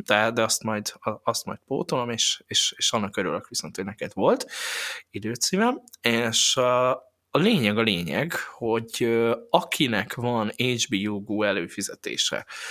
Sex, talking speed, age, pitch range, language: male, 130 wpm, 20-39, 110-125 Hz, Hungarian